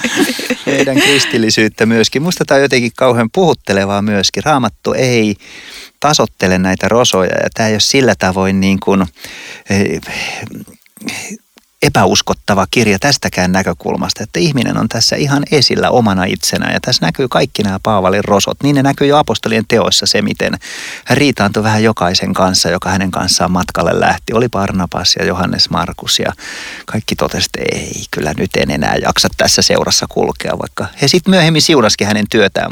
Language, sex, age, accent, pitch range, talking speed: Finnish, male, 30-49, native, 95-130 Hz, 155 wpm